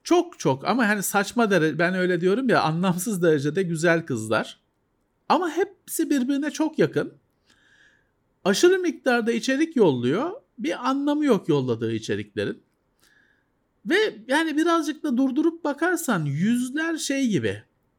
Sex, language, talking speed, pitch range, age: male, Turkish, 125 wpm, 180-280 Hz, 50-69